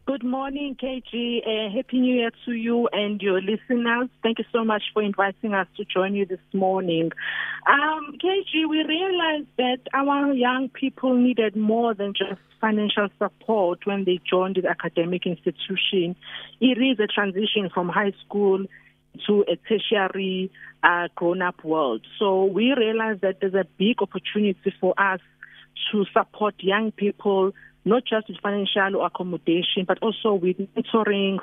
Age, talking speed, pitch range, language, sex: 50-69, 155 wpm, 185-225 Hz, English, female